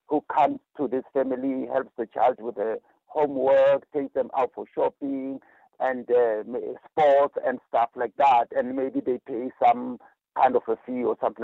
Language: English